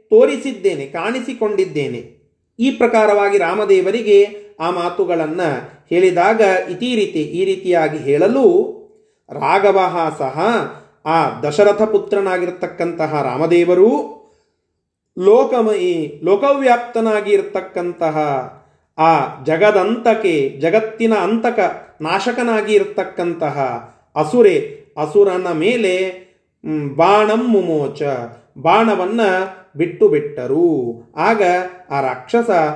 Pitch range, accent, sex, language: 160-225 Hz, native, male, Kannada